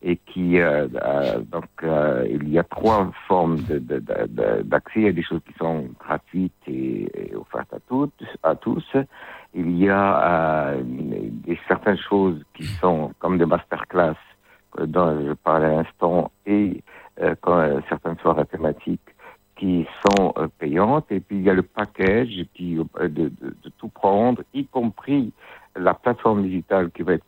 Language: French